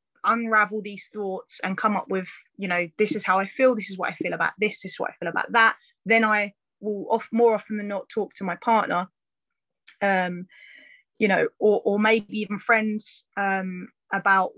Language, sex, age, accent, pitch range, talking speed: English, female, 20-39, British, 195-225 Hz, 205 wpm